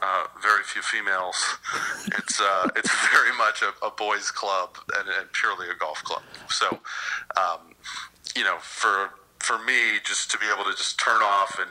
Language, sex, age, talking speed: English, male, 40-59, 180 wpm